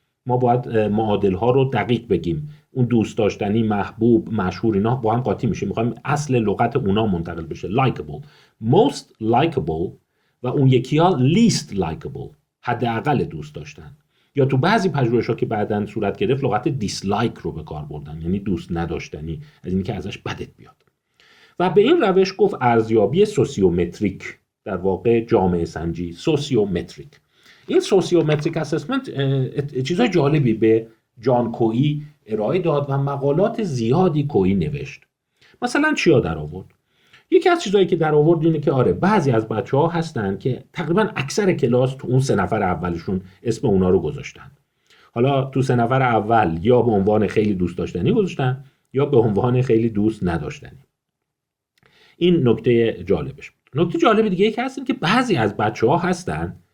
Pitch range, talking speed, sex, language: 110-165 Hz, 155 wpm, male, Persian